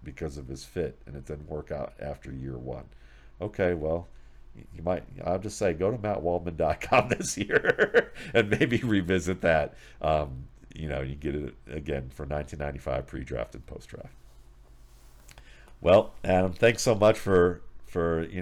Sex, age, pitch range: male, 50-69, 65-85 Hz